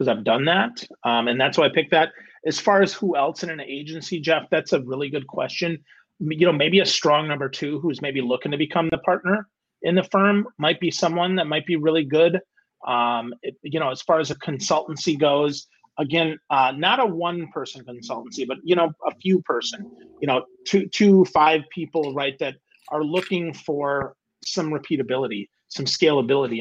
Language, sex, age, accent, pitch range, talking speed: English, male, 30-49, American, 135-170 Hz, 200 wpm